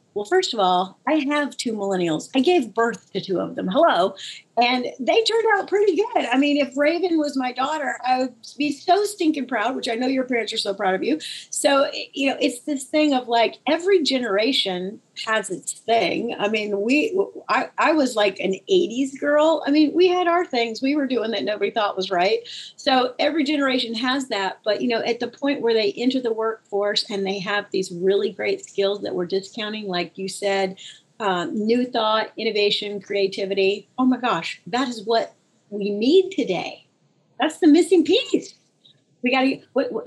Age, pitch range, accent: 40-59, 195-275 Hz, American